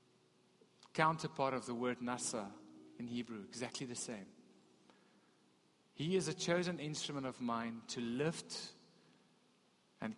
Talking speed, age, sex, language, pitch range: 120 wpm, 40-59, male, English, 125-180 Hz